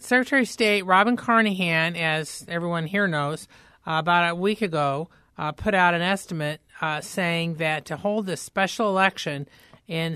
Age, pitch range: 40-59, 150-180 Hz